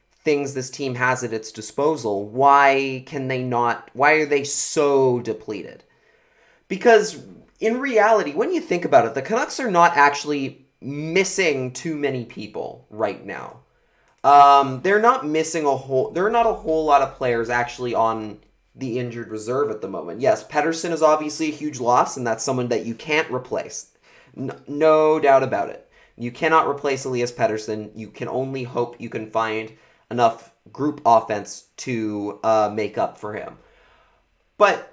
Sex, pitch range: male, 125-160 Hz